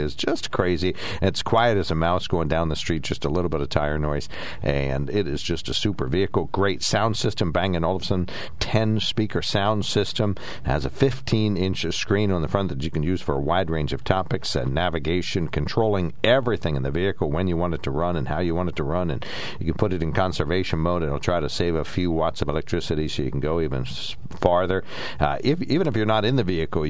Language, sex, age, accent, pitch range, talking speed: English, male, 60-79, American, 75-100 Hz, 240 wpm